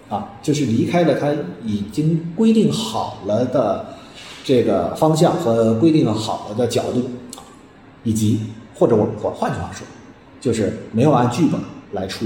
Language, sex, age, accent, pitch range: Chinese, male, 30-49, native, 105-150 Hz